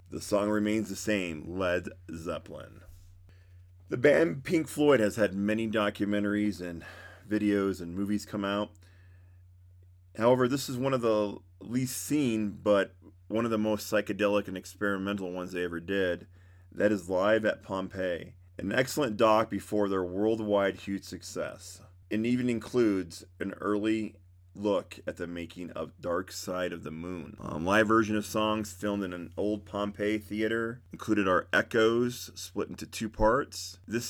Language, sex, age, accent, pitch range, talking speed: English, male, 30-49, American, 90-105 Hz, 155 wpm